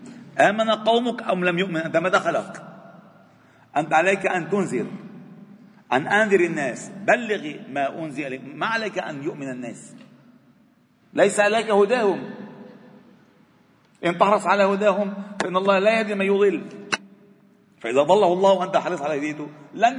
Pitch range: 160-220 Hz